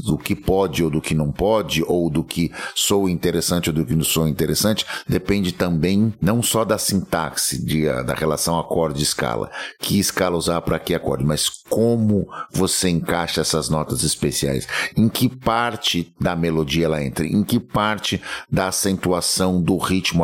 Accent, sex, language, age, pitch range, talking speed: Brazilian, male, Portuguese, 60-79, 80-95 Hz, 165 wpm